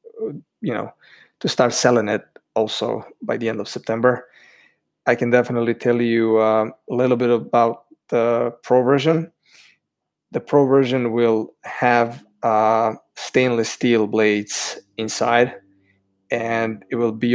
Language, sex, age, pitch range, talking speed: English, male, 20-39, 115-130 Hz, 135 wpm